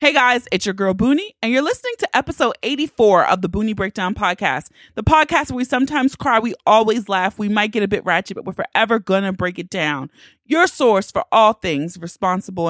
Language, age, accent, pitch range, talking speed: English, 30-49, American, 185-265 Hz, 215 wpm